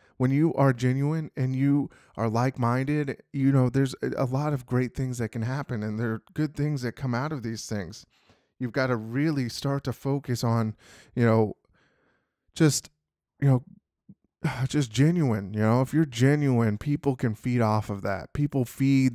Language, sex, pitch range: English, male, 115-135 Hz